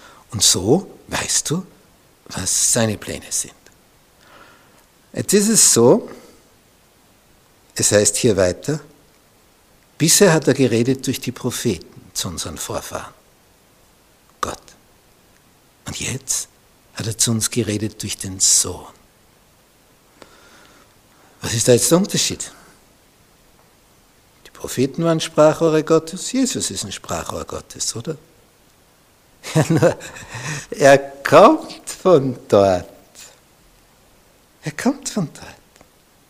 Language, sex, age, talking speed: German, male, 60-79, 100 wpm